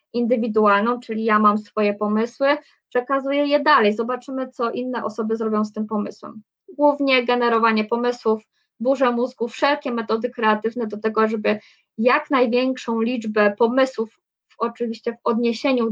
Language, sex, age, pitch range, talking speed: Polish, female, 20-39, 220-260 Hz, 130 wpm